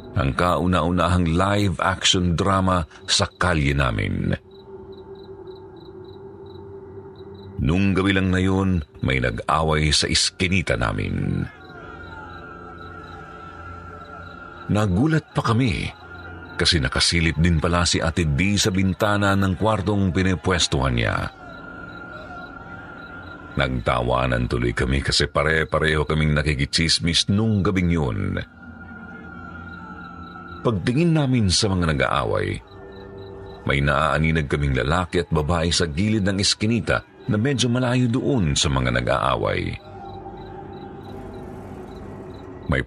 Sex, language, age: male, Filipino, 50-69